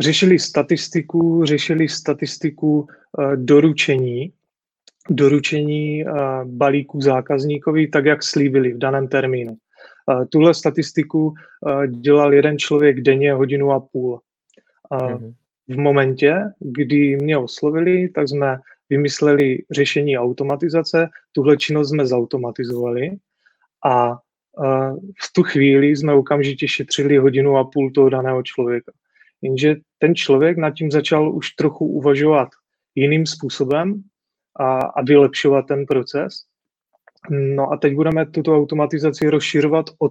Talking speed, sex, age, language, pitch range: 110 wpm, male, 30-49, Czech, 135-150 Hz